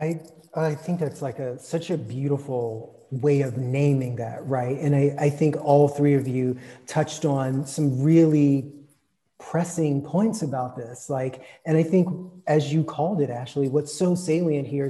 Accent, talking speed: American, 175 wpm